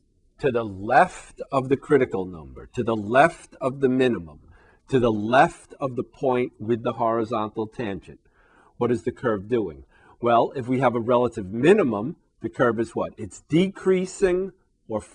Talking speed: 165 wpm